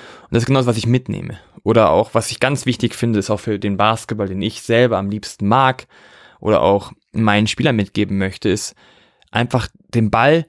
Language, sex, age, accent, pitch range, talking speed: German, male, 20-39, German, 120-150 Hz, 205 wpm